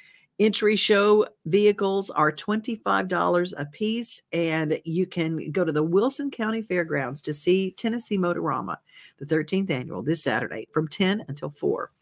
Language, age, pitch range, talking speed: English, 50-69, 160-200 Hz, 145 wpm